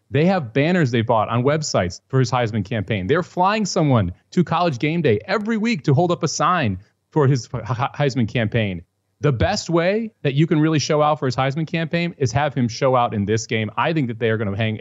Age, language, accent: 30-49, English, American